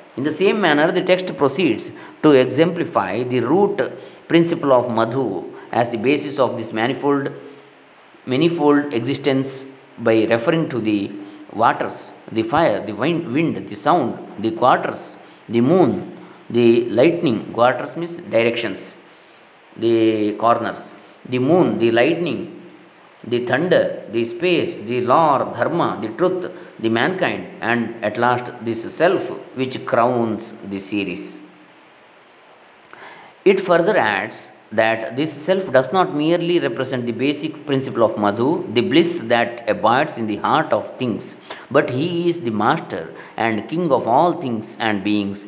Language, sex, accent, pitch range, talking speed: Kannada, male, native, 115-150 Hz, 140 wpm